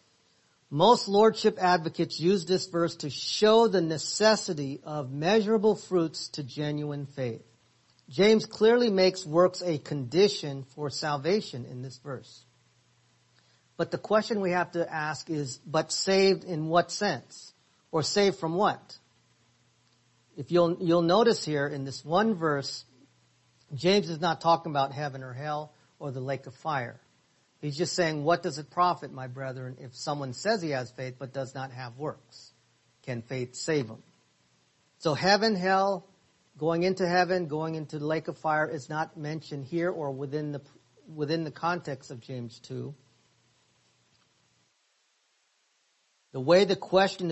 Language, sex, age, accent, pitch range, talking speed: English, male, 50-69, American, 135-175 Hz, 150 wpm